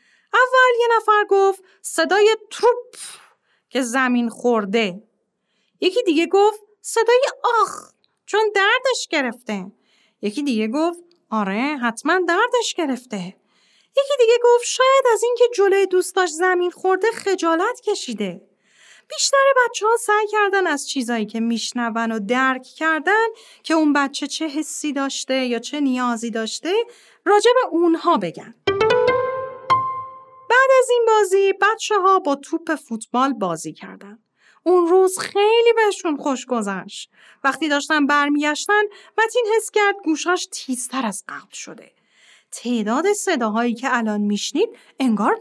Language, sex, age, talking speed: Persian, female, 30-49, 125 wpm